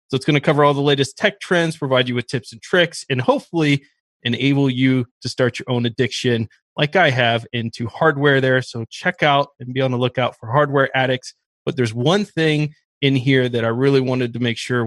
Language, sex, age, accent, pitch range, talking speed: English, male, 20-39, American, 125-155 Hz, 220 wpm